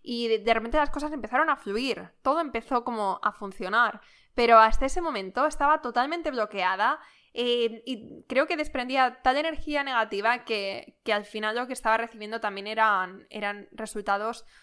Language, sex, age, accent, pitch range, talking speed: Spanish, female, 10-29, Spanish, 215-260 Hz, 165 wpm